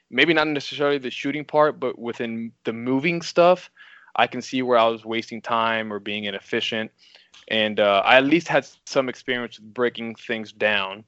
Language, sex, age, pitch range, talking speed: English, male, 20-39, 115-135 Hz, 185 wpm